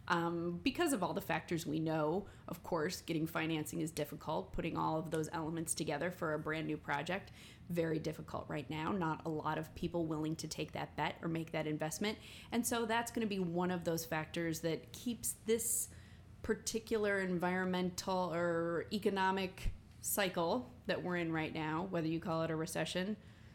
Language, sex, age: English, female, 20-39